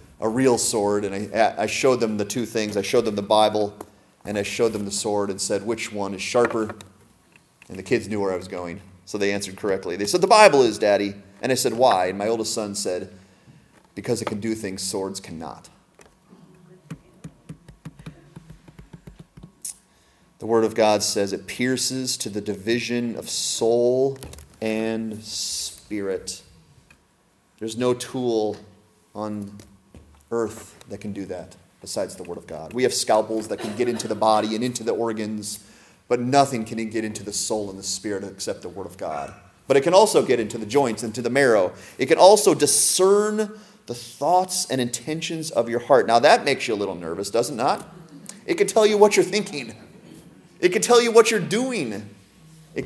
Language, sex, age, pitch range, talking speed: English, male, 30-49, 105-140 Hz, 185 wpm